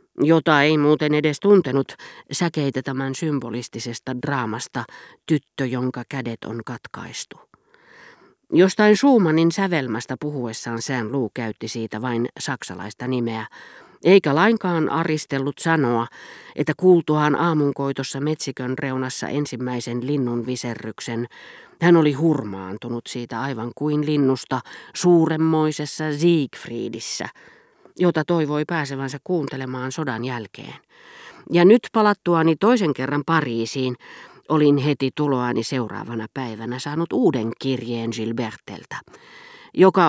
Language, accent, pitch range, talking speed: Finnish, native, 125-165 Hz, 100 wpm